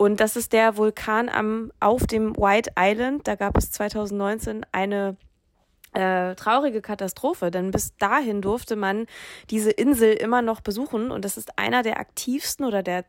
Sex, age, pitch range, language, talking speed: female, 20-39, 195-230 Hz, German, 160 wpm